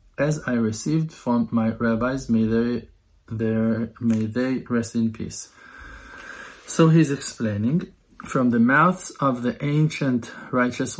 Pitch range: 110-135 Hz